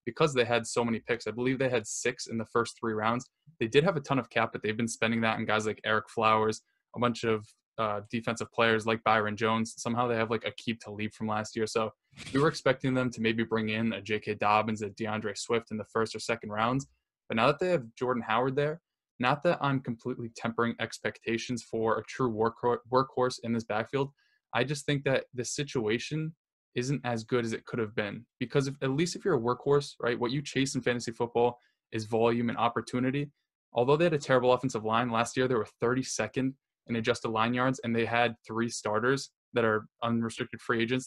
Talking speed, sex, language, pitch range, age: 225 wpm, male, English, 115-130 Hz, 10-29